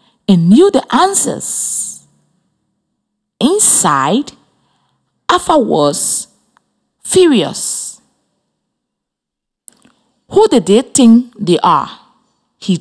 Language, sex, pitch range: English, female, 190-245 Hz